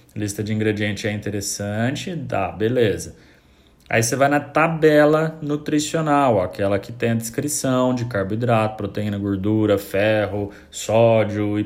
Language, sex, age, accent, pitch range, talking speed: Portuguese, male, 20-39, Brazilian, 100-135 Hz, 130 wpm